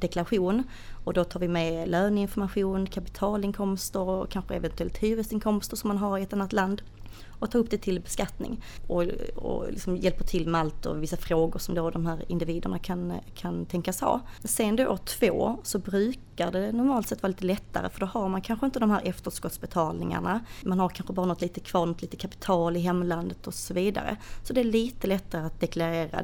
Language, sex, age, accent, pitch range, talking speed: Swedish, female, 30-49, native, 170-200 Hz, 200 wpm